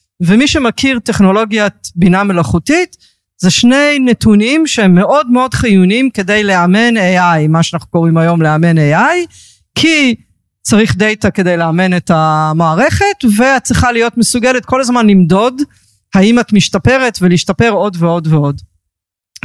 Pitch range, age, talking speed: 175-235 Hz, 40-59, 130 wpm